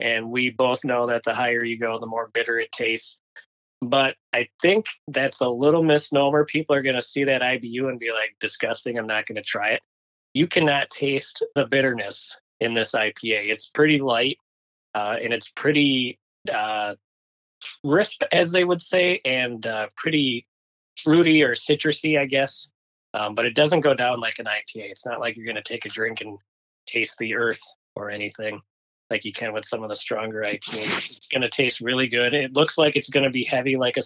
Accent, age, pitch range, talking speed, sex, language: American, 20-39, 110-140 Hz, 205 wpm, male, English